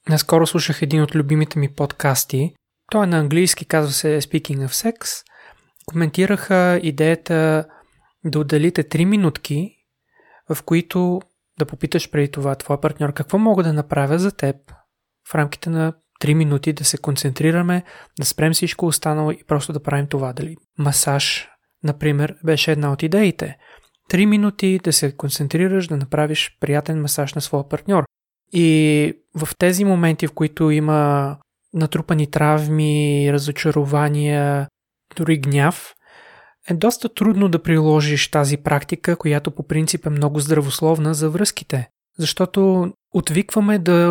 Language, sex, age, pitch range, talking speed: Bulgarian, male, 20-39, 150-175 Hz, 135 wpm